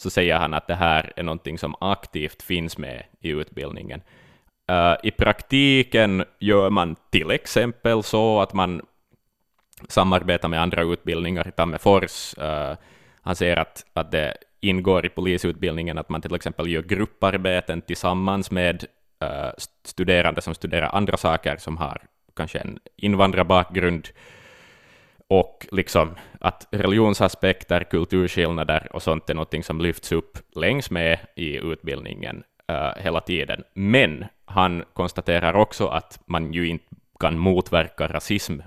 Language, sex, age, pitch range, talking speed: Finnish, male, 20-39, 80-95 Hz, 130 wpm